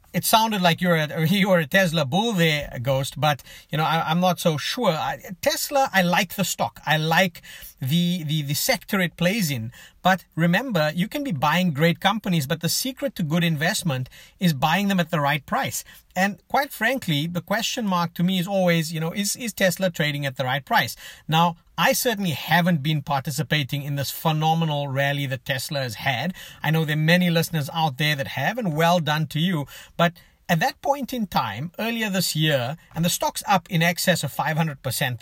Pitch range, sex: 150-190 Hz, male